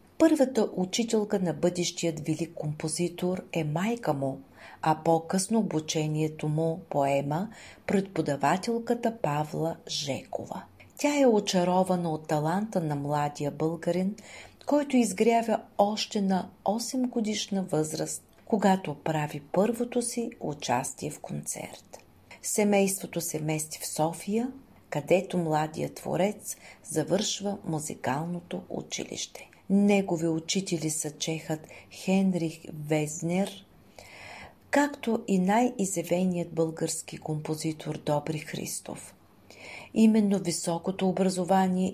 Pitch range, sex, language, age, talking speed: 155-205 Hz, female, Bulgarian, 40-59, 95 wpm